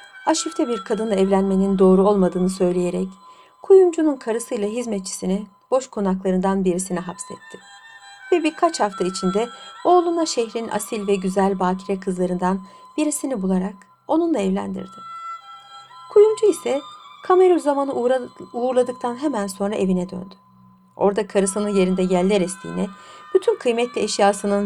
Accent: native